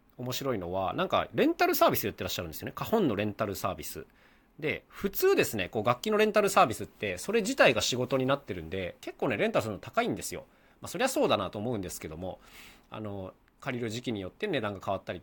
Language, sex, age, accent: Japanese, male, 40-59, native